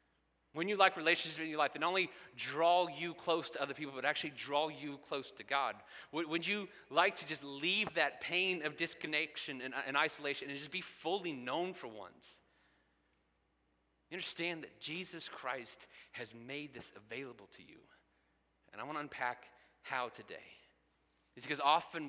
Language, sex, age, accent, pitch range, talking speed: English, male, 30-49, American, 140-175 Hz, 175 wpm